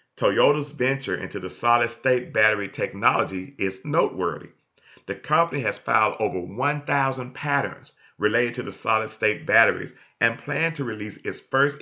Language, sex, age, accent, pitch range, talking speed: English, male, 40-59, American, 95-135 Hz, 135 wpm